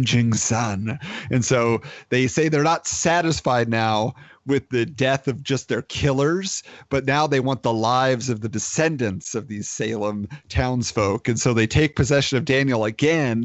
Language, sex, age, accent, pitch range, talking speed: English, male, 40-59, American, 115-145 Hz, 165 wpm